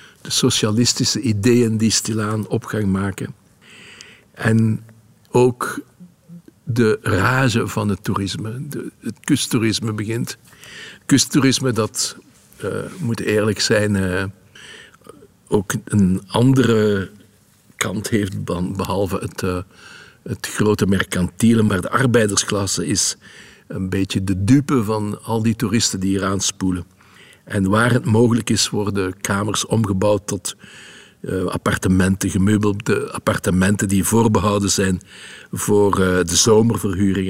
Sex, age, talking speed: male, 60-79, 110 wpm